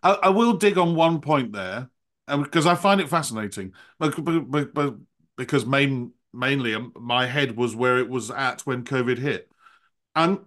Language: English